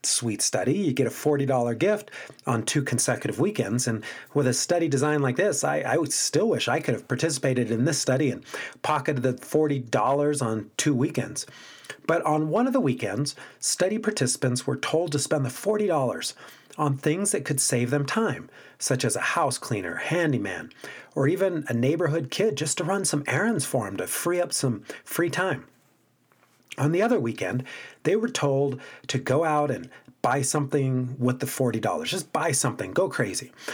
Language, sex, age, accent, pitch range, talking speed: English, male, 40-59, American, 130-165 Hz, 185 wpm